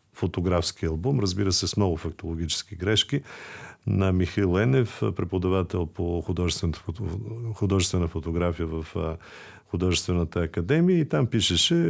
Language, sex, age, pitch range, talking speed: Bulgarian, male, 50-69, 90-115 Hz, 105 wpm